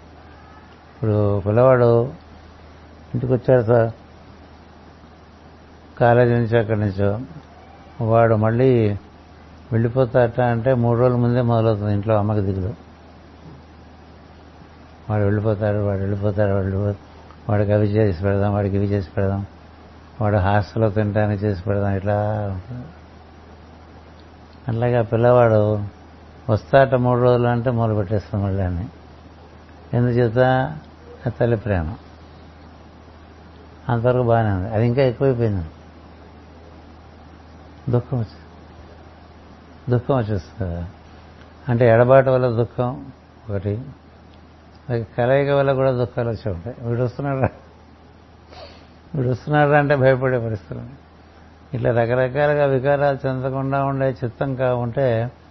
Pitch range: 80-120 Hz